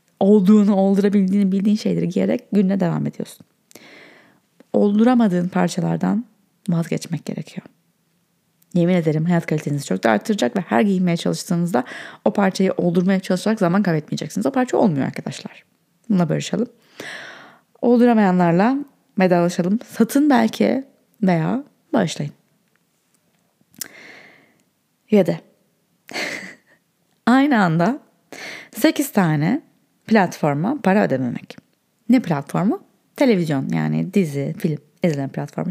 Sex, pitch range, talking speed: female, 170-235 Hz, 95 wpm